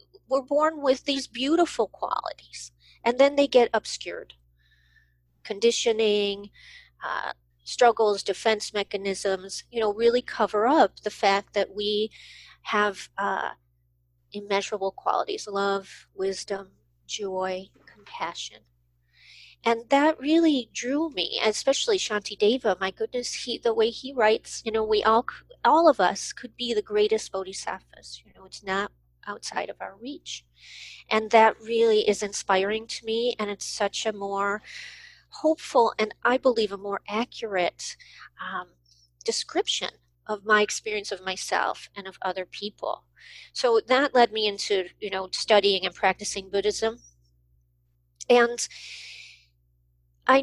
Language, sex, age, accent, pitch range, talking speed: English, female, 40-59, American, 185-240 Hz, 130 wpm